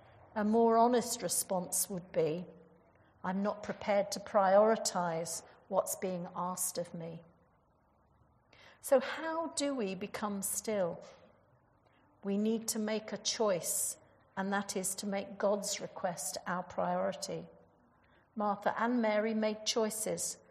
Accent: British